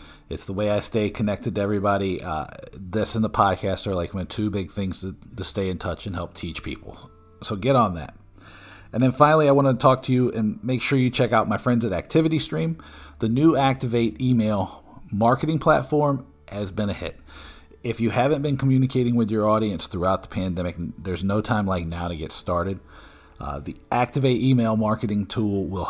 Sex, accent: male, American